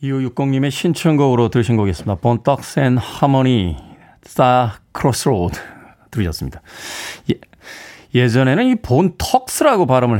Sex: male